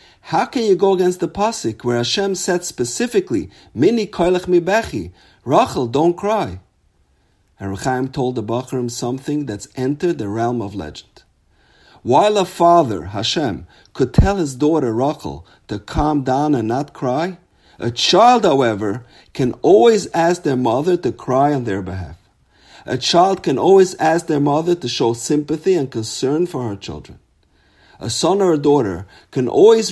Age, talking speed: 50-69, 160 wpm